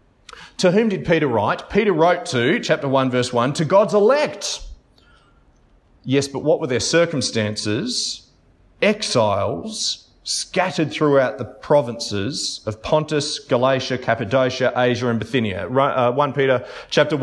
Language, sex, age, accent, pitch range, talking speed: English, male, 30-49, Australian, 120-165 Hz, 130 wpm